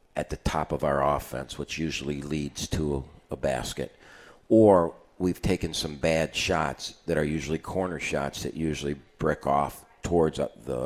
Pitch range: 75-85 Hz